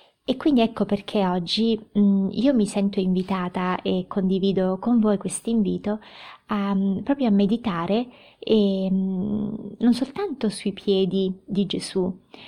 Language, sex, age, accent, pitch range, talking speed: Italian, female, 20-39, native, 190-230 Hz, 125 wpm